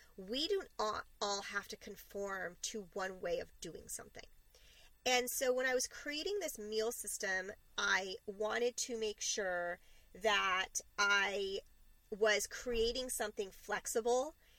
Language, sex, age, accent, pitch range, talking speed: English, female, 30-49, American, 205-275 Hz, 130 wpm